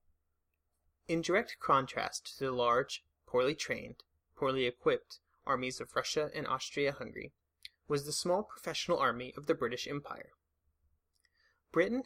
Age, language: 30-49, English